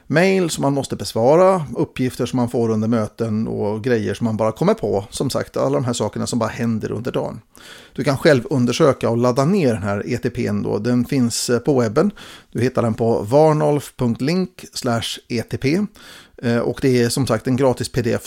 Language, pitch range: Swedish, 115-150 Hz